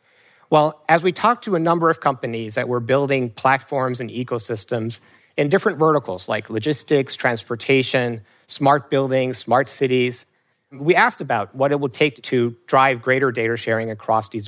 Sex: male